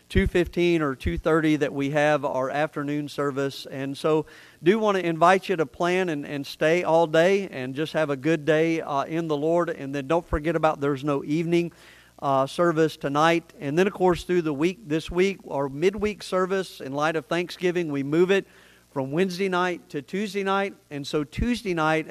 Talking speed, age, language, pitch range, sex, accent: 205 wpm, 50-69, English, 145-180 Hz, male, American